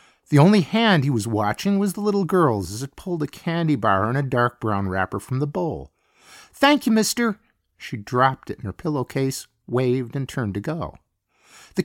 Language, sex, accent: English, male, American